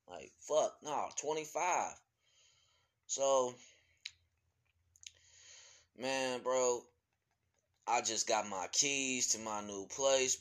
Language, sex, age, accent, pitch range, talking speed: English, male, 20-39, American, 115-135 Hz, 90 wpm